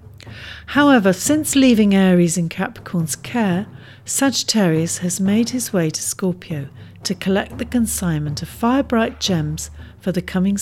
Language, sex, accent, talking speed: English, female, British, 135 wpm